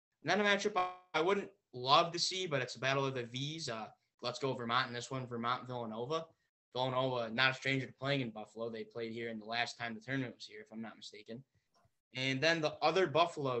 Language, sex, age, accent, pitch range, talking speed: English, male, 20-39, American, 120-145 Hz, 230 wpm